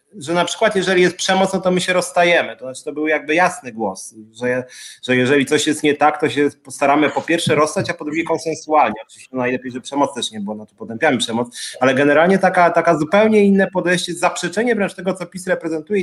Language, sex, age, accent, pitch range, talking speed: Polish, male, 30-49, native, 140-195 Hz, 220 wpm